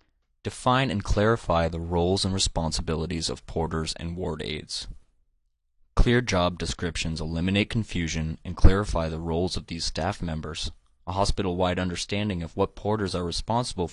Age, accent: 20-39, American